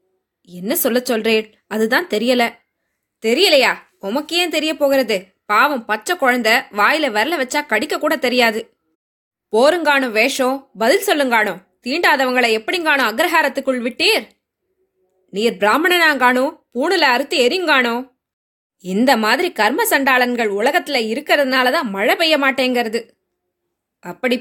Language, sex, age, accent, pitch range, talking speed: Tamil, female, 20-39, native, 230-305 Hz, 100 wpm